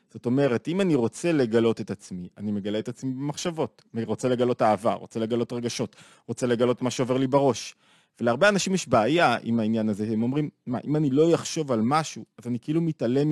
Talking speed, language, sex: 205 wpm, Hebrew, male